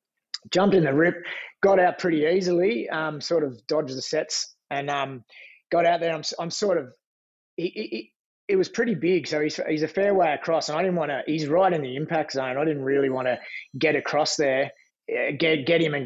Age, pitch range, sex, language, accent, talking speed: 30-49, 135-160 Hz, male, English, Australian, 225 wpm